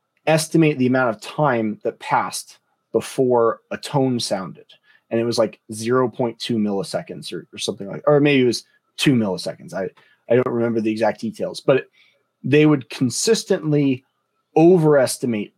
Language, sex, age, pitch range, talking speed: English, male, 30-49, 115-145 Hz, 150 wpm